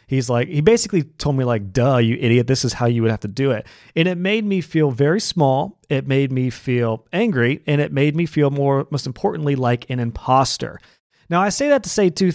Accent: American